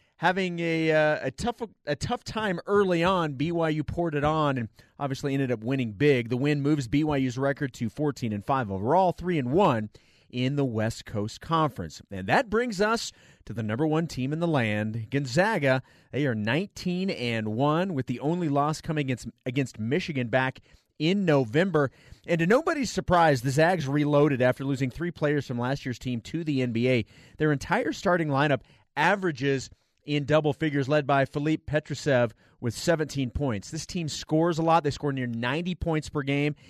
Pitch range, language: 130-170 Hz, English